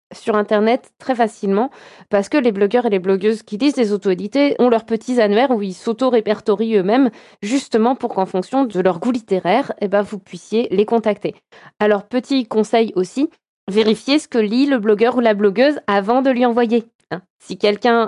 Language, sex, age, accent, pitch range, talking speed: French, female, 20-39, French, 195-235 Hz, 185 wpm